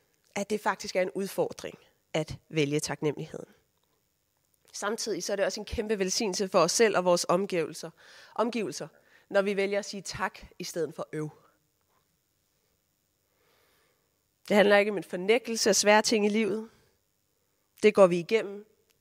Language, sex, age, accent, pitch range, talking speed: Danish, female, 30-49, native, 185-225 Hz, 155 wpm